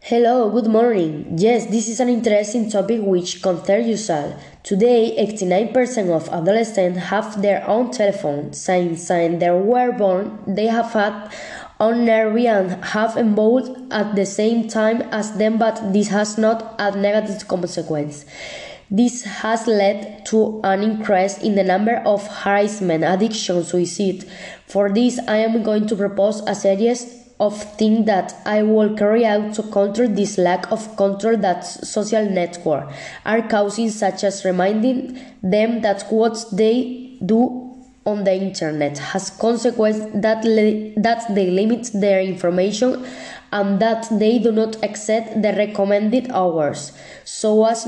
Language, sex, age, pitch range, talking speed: Spanish, female, 20-39, 195-225 Hz, 150 wpm